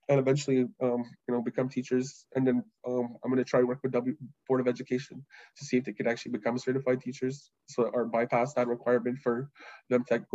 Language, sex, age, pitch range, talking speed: English, male, 20-39, 120-130 Hz, 230 wpm